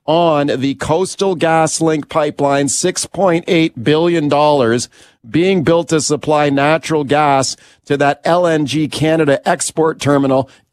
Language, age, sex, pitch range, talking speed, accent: English, 50-69, male, 135-160 Hz, 130 wpm, American